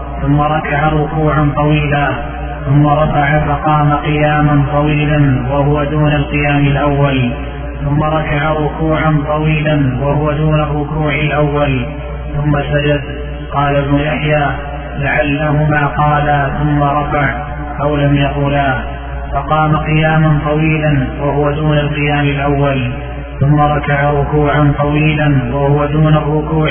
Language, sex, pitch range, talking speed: Arabic, male, 145-155 Hz, 105 wpm